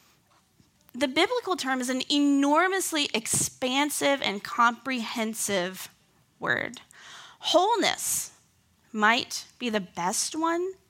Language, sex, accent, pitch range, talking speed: English, female, American, 210-290 Hz, 90 wpm